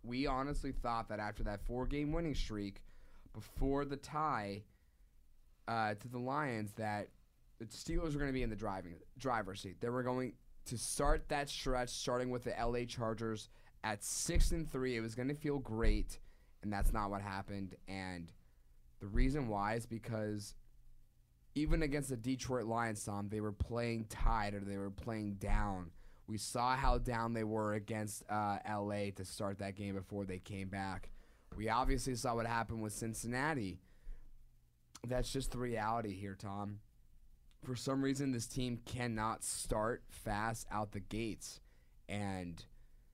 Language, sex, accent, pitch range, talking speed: English, male, American, 100-125 Hz, 165 wpm